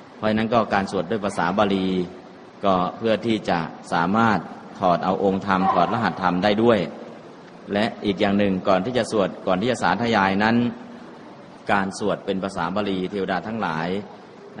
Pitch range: 90-110 Hz